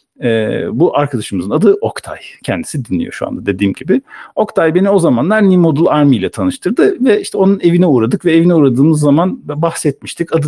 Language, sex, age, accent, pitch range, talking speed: Turkish, male, 50-69, native, 130-190 Hz, 180 wpm